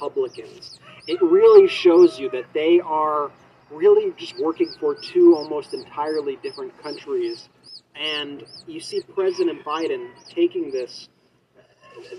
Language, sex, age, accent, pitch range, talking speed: English, male, 40-59, American, 335-405 Hz, 120 wpm